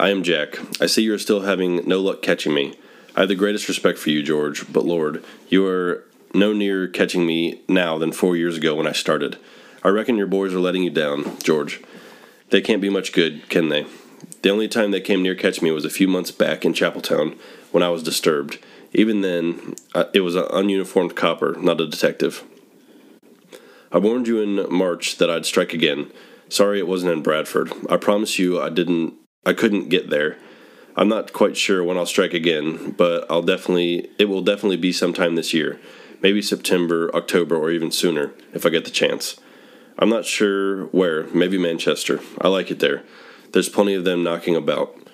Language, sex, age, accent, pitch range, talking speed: English, male, 30-49, American, 85-95 Hz, 200 wpm